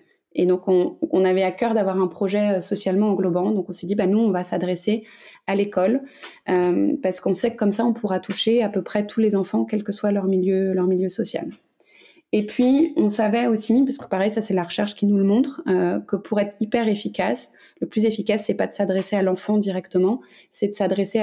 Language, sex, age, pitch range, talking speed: French, female, 20-39, 185-215 Hz, 230 wpm